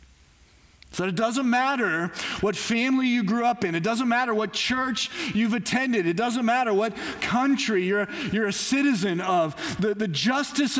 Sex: male